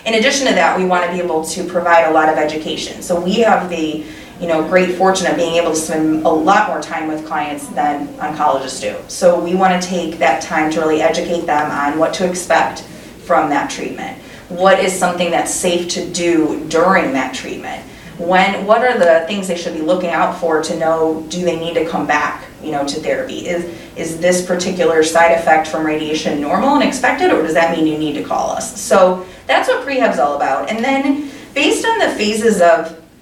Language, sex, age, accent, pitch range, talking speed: English, female, 30-49, American, 160-185 Hz, 220 wpm